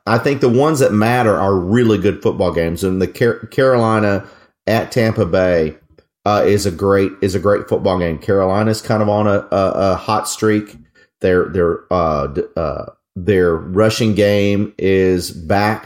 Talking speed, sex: 170 wpm, male